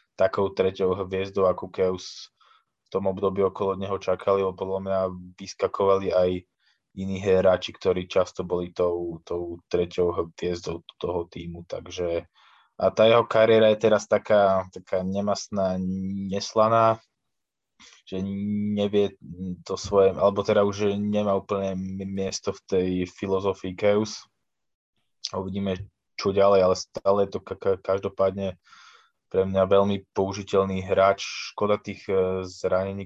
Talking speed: 125 wpm